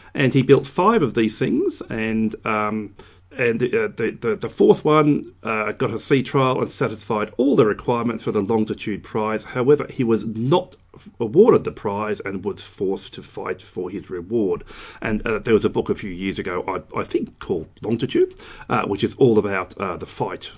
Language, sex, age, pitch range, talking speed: English, male, 40-59, 105-145 Hz, 195 wpm